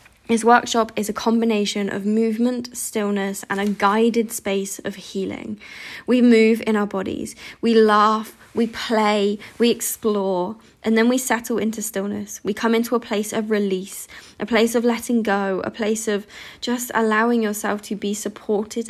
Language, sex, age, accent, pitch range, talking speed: English, female, 20-39, British, 200-225 Hz, 165 wpm